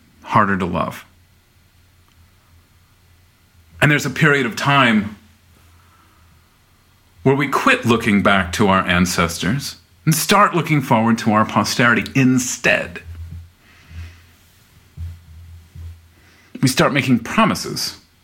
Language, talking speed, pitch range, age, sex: English, 95 wpm, 90-120 Hz, 40-59, male